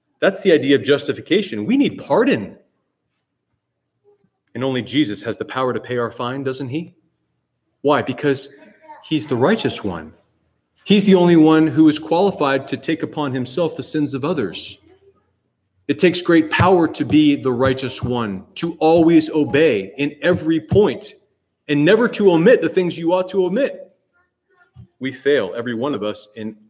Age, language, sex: 30-49, English, male